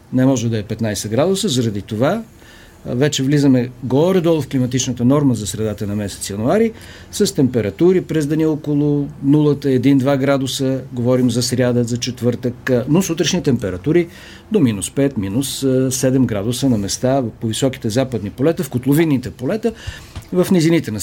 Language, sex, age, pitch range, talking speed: Bulgarian, male, 50-69, 120-160 Hz, 140 wpm